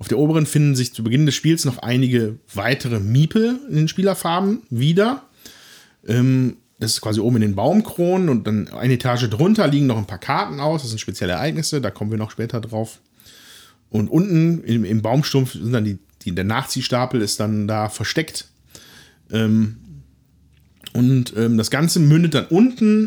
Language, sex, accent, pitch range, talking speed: German, male, German, 115-160 Hz, 165 wpm